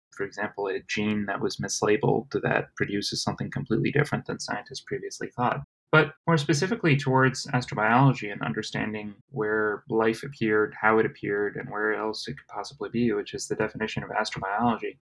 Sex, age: male, 20-39